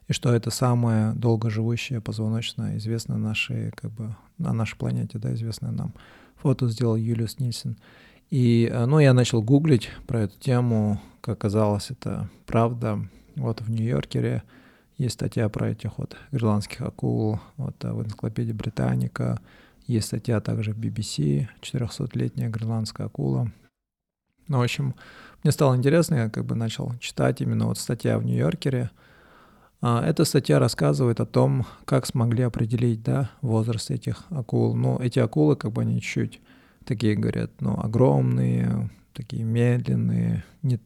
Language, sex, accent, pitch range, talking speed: Russian, male, native, 110-130 Hz, 140 wpm